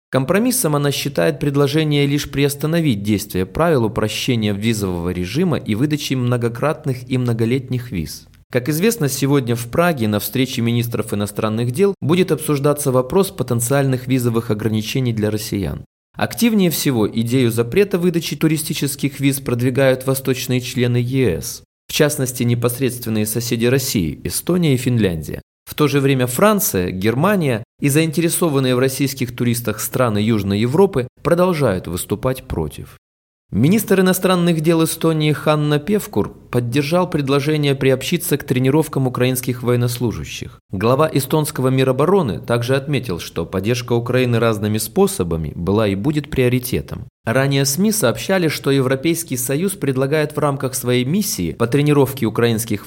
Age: 20-39